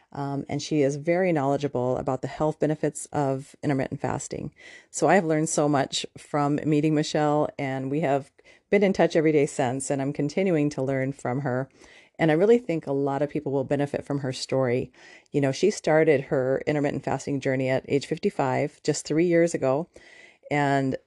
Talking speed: 190 wpm